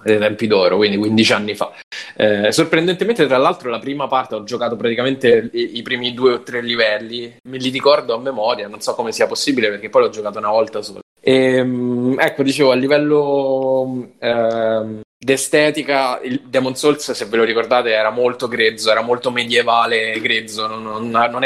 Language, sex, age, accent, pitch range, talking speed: Italian, male, 20-39, native, 110-125 Hz, 180 wpm